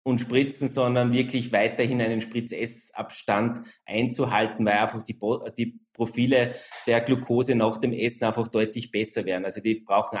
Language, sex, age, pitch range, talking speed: German, male, 20-39, 115-140 Hz, 155 wpm